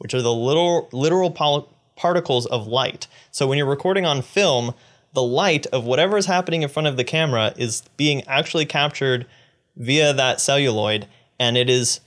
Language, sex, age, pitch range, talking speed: English, male, 20-39, 115-145 Hz, 170 wpm